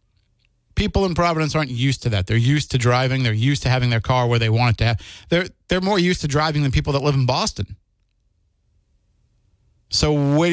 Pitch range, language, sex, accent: 105-150 Hz, English, male, American